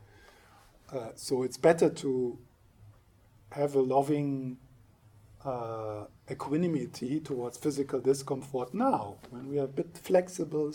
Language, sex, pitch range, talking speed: English, male, 110-140 Hz, 110 wpm